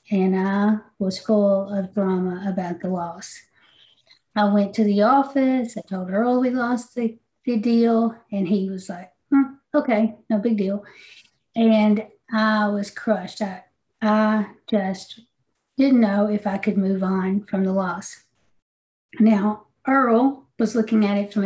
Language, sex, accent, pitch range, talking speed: English, female, American, 200-225 Hz, 155 wpm